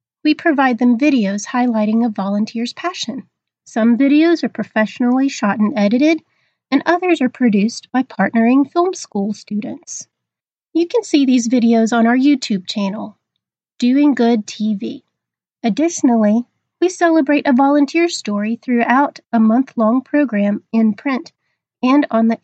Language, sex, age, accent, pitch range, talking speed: English, female, 30-49, American, 220-290 Hz, 135 wpm